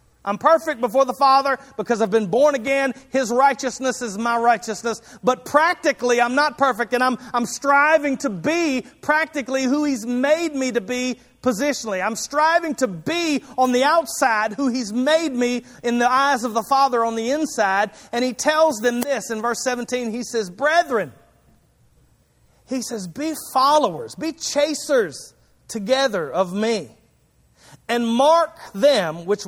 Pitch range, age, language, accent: 245-300 Hz, 40-59, English, American